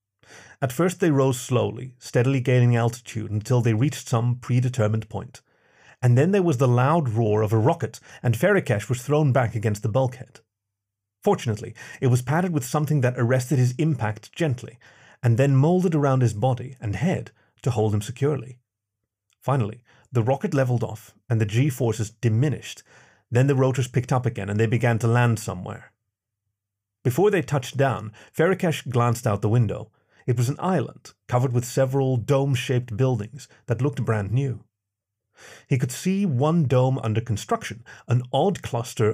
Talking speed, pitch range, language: 165 wpm, 110-140 Hz, English